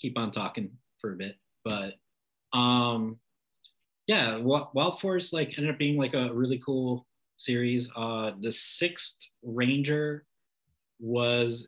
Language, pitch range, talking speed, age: English, 105-130 Hz, 130 wpm, 30-49